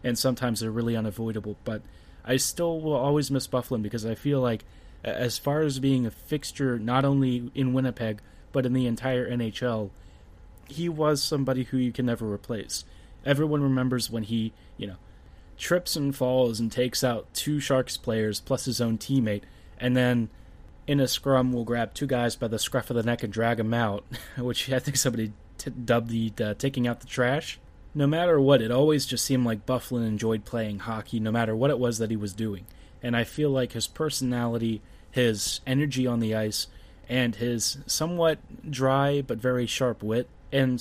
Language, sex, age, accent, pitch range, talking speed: English, male, 20-39, American, 110-130 Hz, 190 wpm